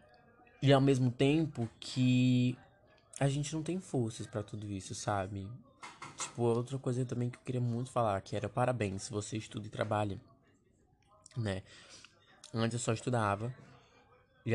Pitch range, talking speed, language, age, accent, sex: 105-130 Hz, 150 wpm, Portuguese, 20-39, Brazilian, male